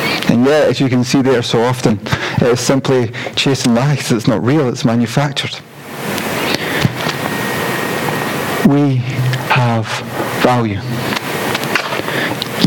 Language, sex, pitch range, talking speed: English, male, 125-155 Hz, 105 wpm